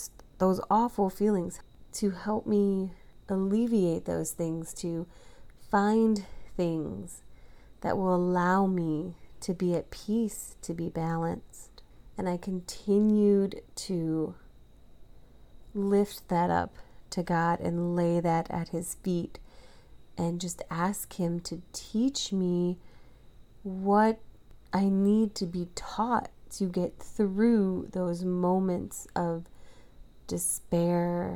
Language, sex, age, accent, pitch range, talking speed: English, female, 30-49, American, 170-205 Hz, 110 wpm